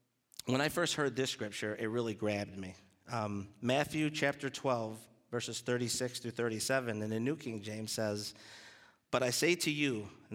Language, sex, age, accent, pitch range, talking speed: English, male, 50-69, American, 115-140 Hz, 175 wpm